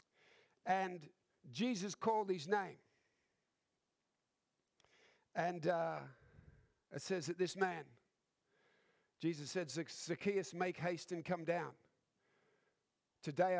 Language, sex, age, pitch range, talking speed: English, male, 50-69, 165-200 Hz, 95 wpm